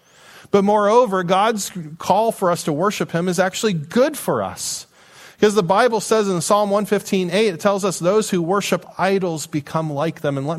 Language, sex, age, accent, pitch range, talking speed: English, male, 40-59, American, 135-190 Hz, 185 wpm